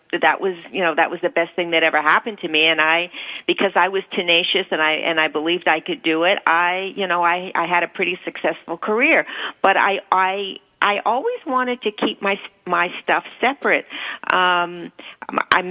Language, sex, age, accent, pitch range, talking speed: English, female, 50-69, American, 165-195 Hz, 205 wpm